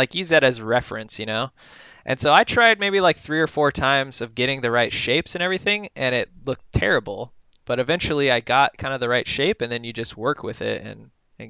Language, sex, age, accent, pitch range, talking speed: English, male, 20-39, American, 120-155 Hz, 240 wpm